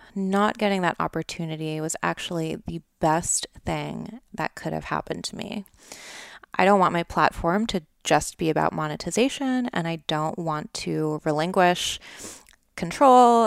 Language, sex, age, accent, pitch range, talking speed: English, female, 20-39, American, 155-205 Hz, 145 wpm